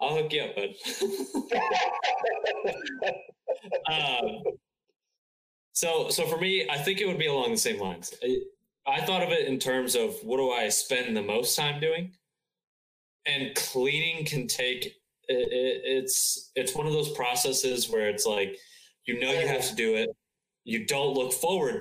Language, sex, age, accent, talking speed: English, male, 20-39, American, 170 wpm